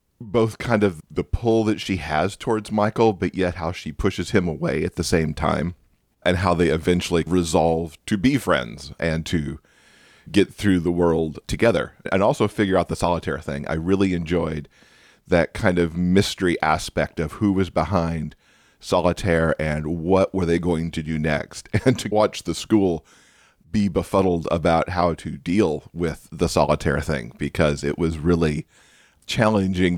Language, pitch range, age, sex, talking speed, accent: English, 80-95 Hz, 40-59, male, 170 wpm, American